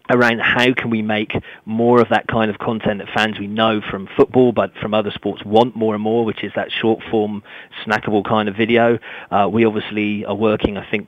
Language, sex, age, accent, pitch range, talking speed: English, male, 40-59, British, 105-115 Hz, 220 wpm